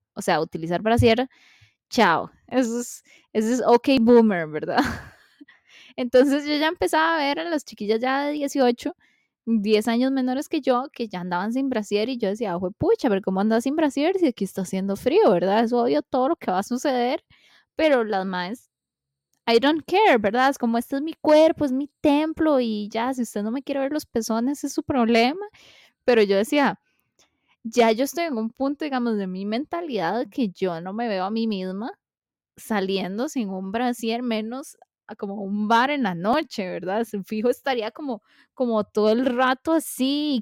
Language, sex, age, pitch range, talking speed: Spanish, female, 10-29, 210-275 Hz, 195 wpm